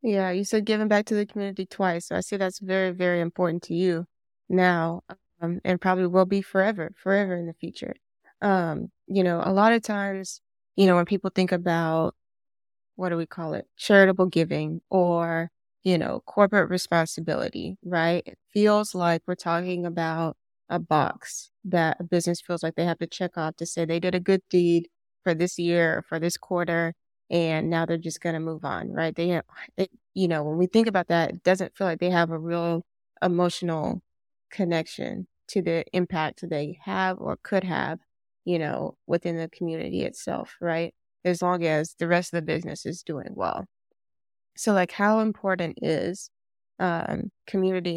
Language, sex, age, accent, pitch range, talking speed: English, female, 20-39, American, 165-190 Hz, 185 wpm